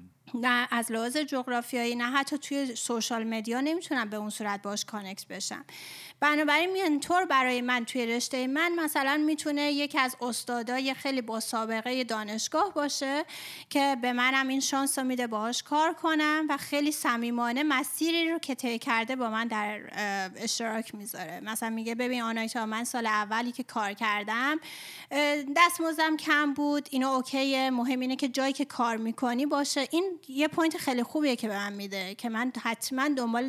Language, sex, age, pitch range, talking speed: Persian, female, 30-49, 230-285 Hz, 165 wpm